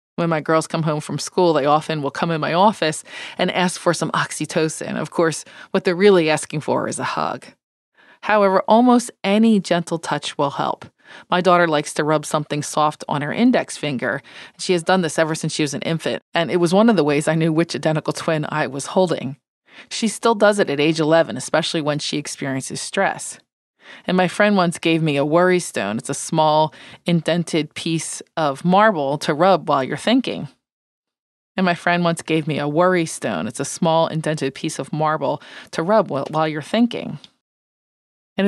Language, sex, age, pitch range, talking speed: English, female, 20-39, 155-195 Hz, 200 wpm